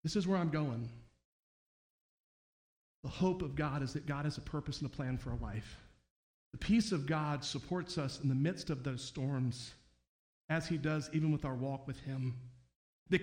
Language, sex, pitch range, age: English, male, 130-160 Hz, 40-59